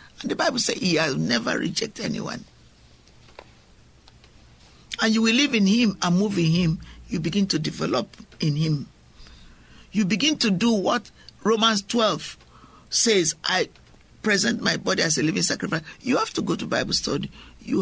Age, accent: 50-69, Nigerian